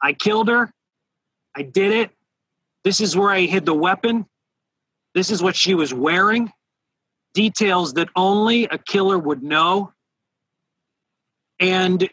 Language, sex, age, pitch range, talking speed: English, male, 40-59, 160-200 Hz, 135 wpm